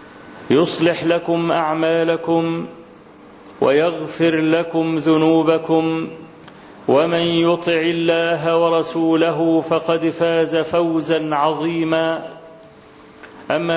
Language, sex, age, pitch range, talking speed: Arabic, male, 40-59, 160-175 Hz, 65 wpm